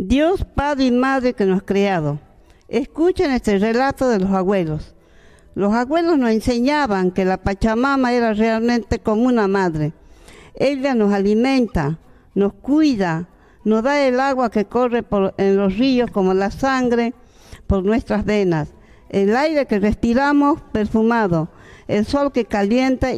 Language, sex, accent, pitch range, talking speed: Spanish, female, American, 200-260 Hz, 145 wpm